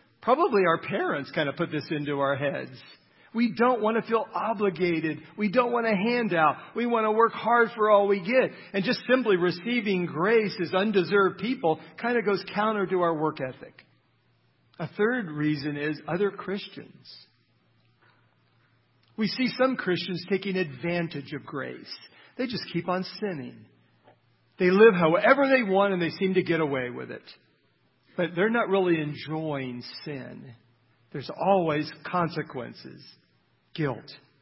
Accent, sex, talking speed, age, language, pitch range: American, male, 150 wpm, 50-69, English, 145-205 Hz